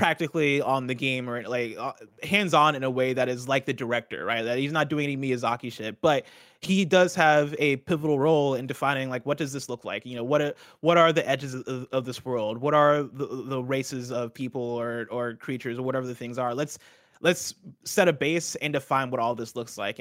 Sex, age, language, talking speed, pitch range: male, 20-39, English, 230 wpm, 130-160 Hz